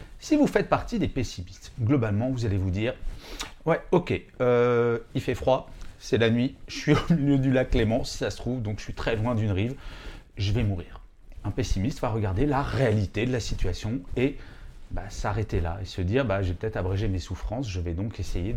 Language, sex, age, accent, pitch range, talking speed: French, male, 30-49, French, 95-140 Hz, 225 wpm